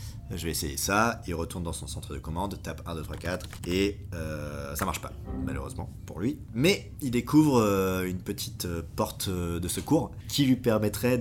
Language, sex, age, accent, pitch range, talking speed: French, male, 40-59, French, 85-105 Hz, 185 wpm